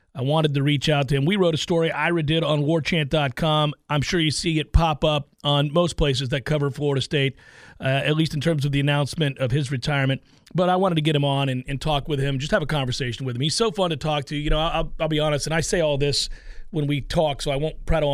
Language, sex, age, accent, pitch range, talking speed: English, male, 40-59, American, 145-175 Hz, 270 wpm